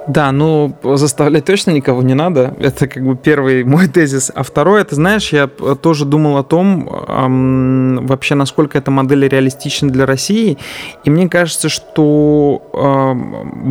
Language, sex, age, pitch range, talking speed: Russian, male, 20-39, 130-150 Hz, 155 wpm